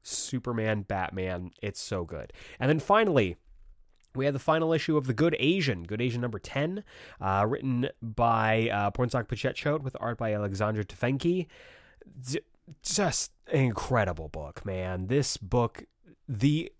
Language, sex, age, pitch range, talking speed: English, male, 20-39, 105-145 Hz, 145 wpm